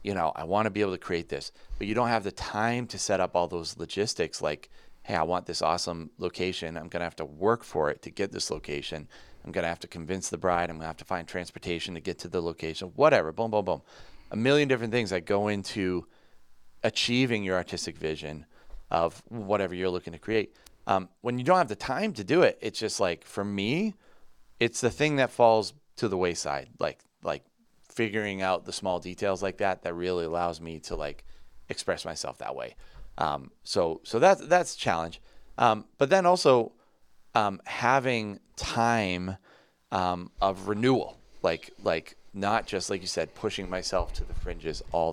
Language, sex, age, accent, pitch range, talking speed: English, male, 30-49, American, 85-110 Hz, 205 wpm